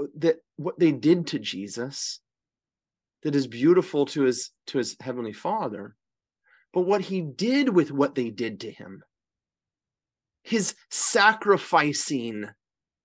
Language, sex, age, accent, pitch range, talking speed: English, male, 30-49, American, 135-190 Hz, 125 wpm